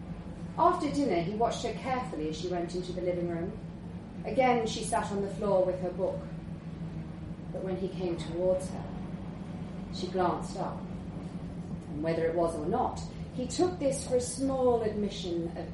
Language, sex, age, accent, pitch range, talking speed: English, female, 30-49, British, 175-225 Hz, 170 wpm